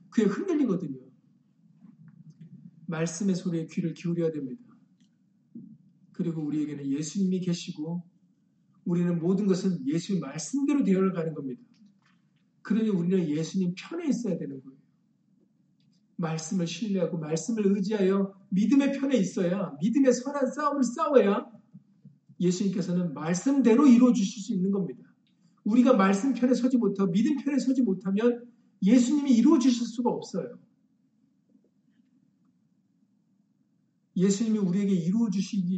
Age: 40-59